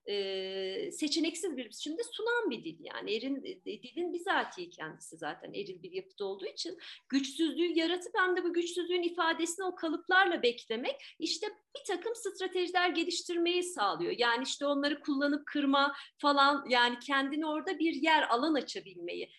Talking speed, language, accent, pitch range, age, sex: 150 wpm, Turkish, native, 275-360 Hz, 40-59, female